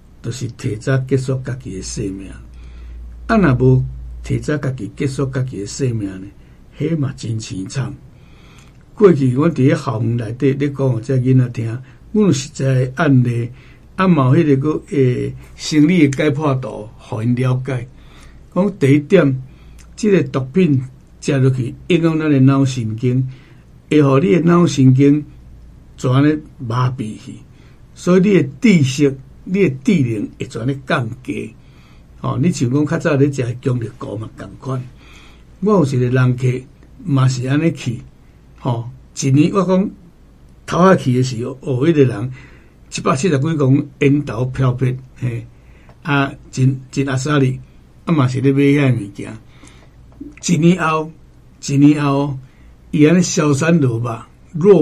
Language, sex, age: Chinese, male, 60-79